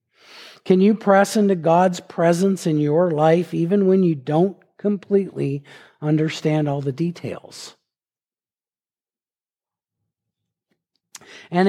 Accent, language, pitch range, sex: American, English, 150-200 Hz, male